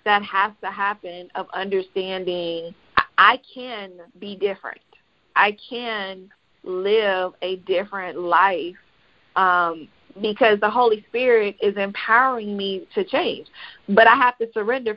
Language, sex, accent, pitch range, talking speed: English, female, American, 185-225 Hz, 125 wpm